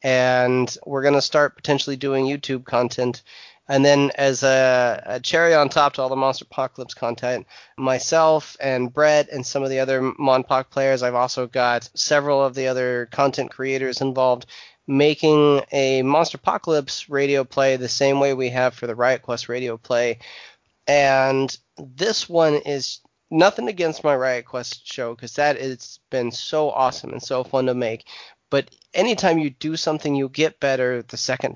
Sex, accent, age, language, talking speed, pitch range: male, American, 30-49, English, 170 wpm, 125-145 Hz